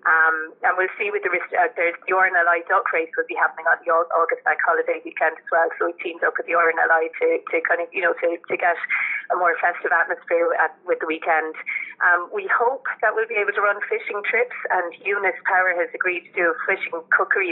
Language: English